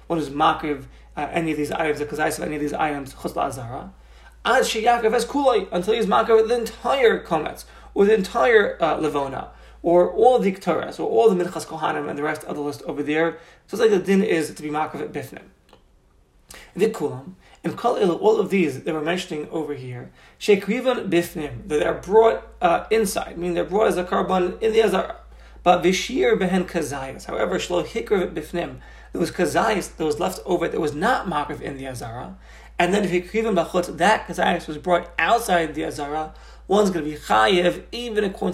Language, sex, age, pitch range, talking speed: English, male, 30-49, 150-195 Hz, 205 wpm